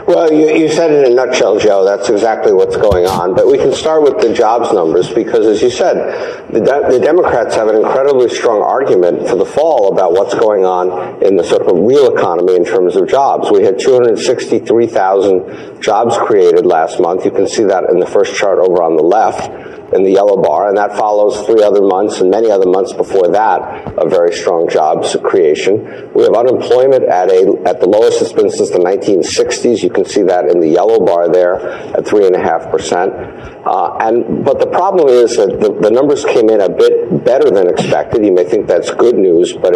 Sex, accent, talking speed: male, American, 215 wpm